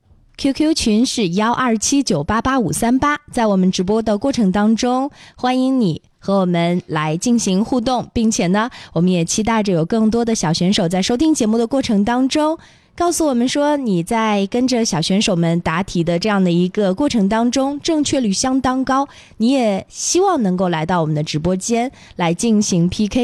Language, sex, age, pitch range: Chinese, female, 20-39, 185-260 Hz